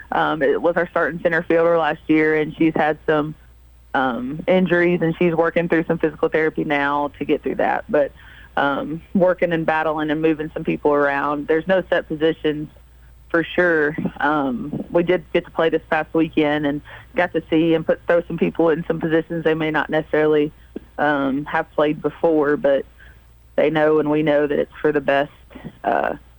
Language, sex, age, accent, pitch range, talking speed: English, female, 30-49, American, 145-165 Hz, 190 wpm